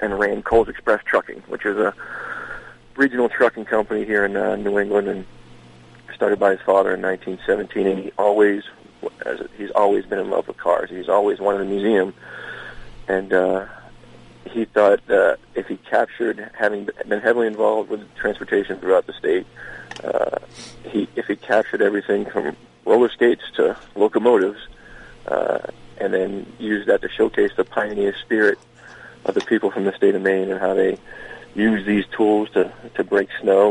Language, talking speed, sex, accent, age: English, 170 wpm, male, American, 40-59